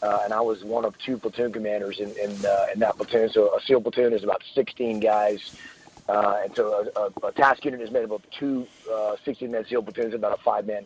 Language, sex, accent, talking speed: English, male, American, 240 wpm